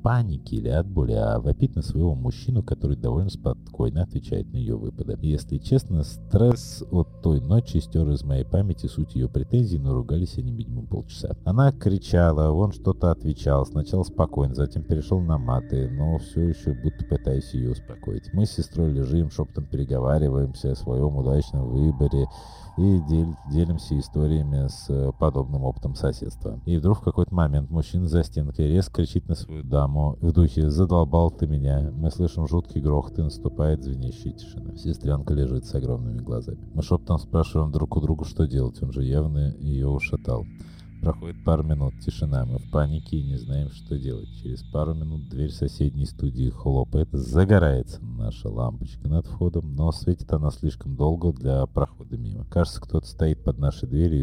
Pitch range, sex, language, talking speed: 70-90 Hz, male, Russian, 165 wpm